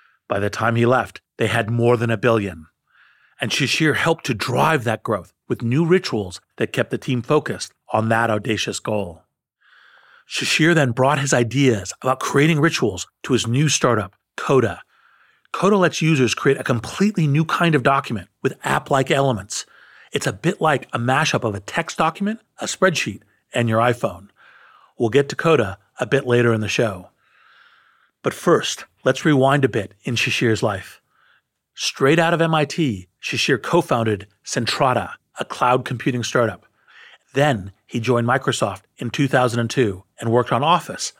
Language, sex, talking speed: English, male, 160 wpm